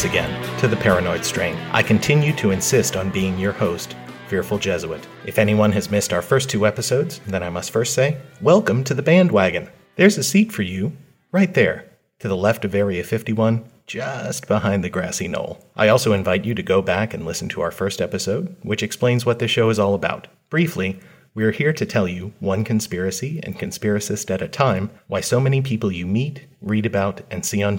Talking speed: 205 wpm